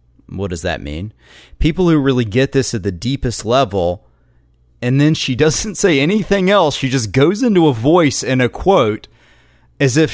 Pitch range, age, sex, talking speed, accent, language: 100-135 Hz, 30-49, male, 185 wpm, American, English